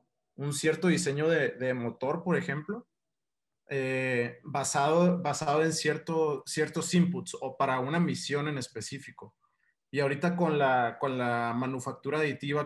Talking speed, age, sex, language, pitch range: 135 wpm, 20-39, male, Spanish, 120-150 Hz